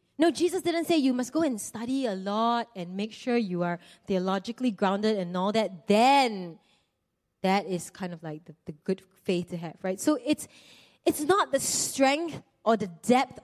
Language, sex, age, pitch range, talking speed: English, female, 20-39, 210-270 Hz, 190 wpm